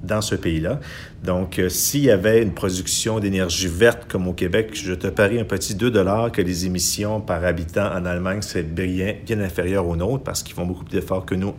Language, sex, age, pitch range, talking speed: French, male, 50-69, 90-105 Hz, 220 wpm